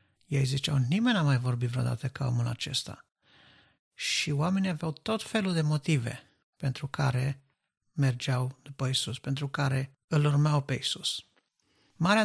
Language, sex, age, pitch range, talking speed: Romanian, male, 50-69, 130-150 Hz, 140 wpm